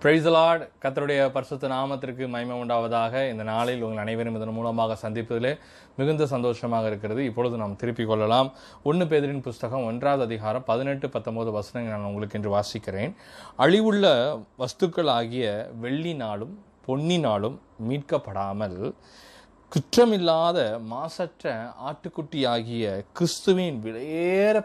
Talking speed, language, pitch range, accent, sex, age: 100 wpm, Tamil, 110-150 Hz, native, male, 20-39